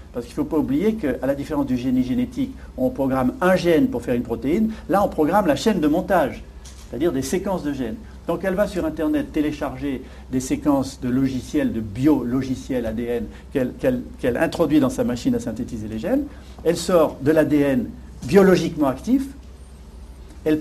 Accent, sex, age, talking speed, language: French, male, 50-69, 185 wpm, French